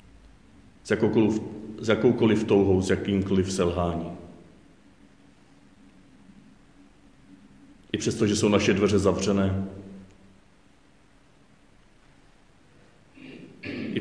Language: Czech